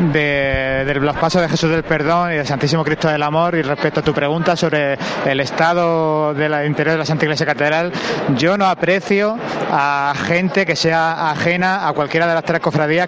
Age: 20-39